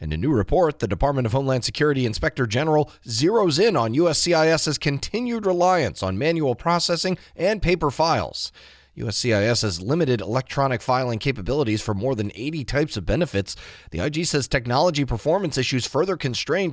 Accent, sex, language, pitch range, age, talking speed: American, male, English, 115-160 Hz, 30-49, 160 wpm